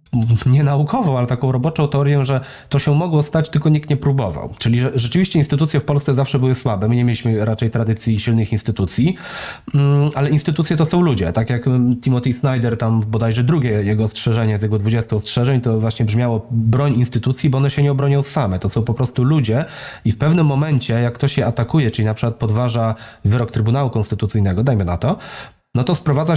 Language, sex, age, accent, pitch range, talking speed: Polish, male, 30-49, native, 120-150 Hz, 195 wpm